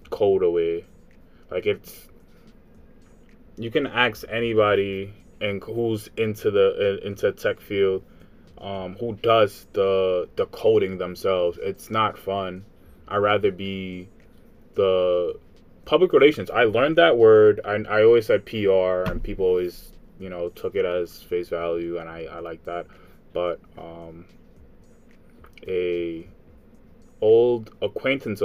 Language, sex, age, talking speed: English, male, 20-39, 130 wpm